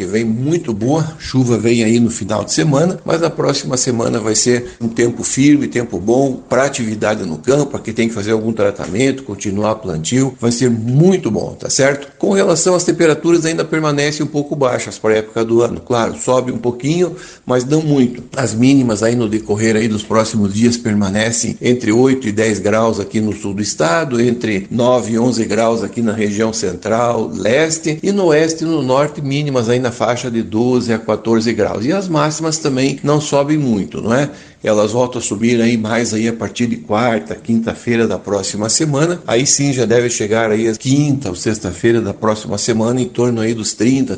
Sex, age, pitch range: male, 60-79, 110-135 Hz